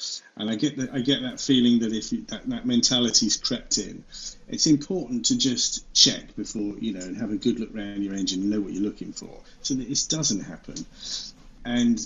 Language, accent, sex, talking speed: English, British, male, 220 wpm